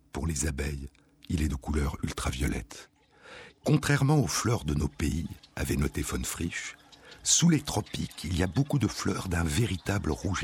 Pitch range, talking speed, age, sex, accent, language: 70-100 Hz, 170 wpm, 60-79, male, French, French